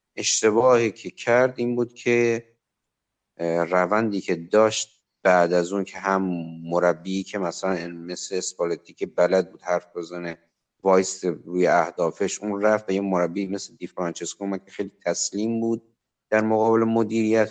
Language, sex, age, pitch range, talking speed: Persian, male, 50-69, 95-120 Hz, 145 wpm